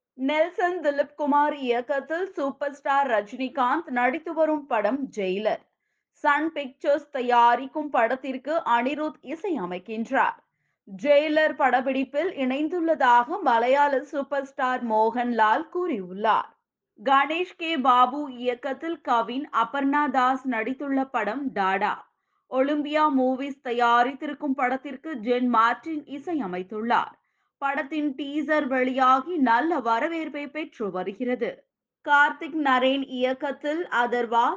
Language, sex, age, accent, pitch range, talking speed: Tamil, female, 20-39, native, 245-295 Hz, 95 wpm